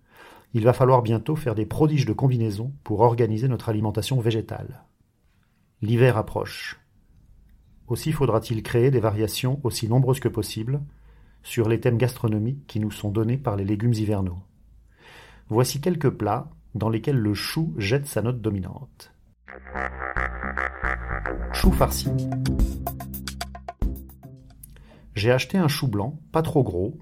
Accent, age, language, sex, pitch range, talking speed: French, 40-59, French, male, 105-140 Hz, 130 wpm